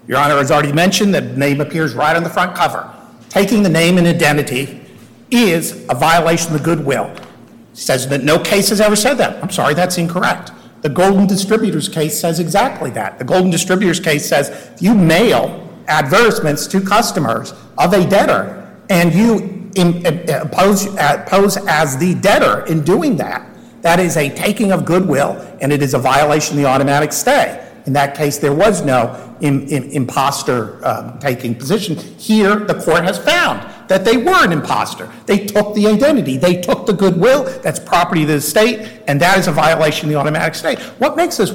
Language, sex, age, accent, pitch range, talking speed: English, male, 50-69, American, 150-205 Hz, 180 wpm